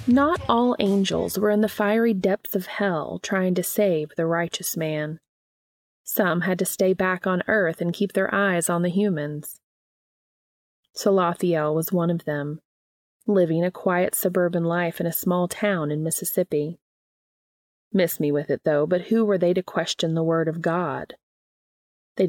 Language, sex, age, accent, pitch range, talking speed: English, female, 30-49, American, 160-195 Hz, 165 wpm